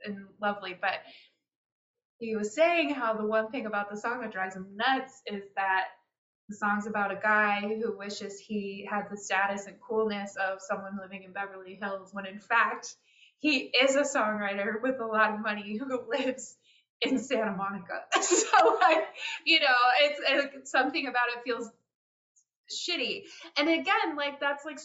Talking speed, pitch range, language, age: 170 wpm, 195-250 Hz, English, 20-39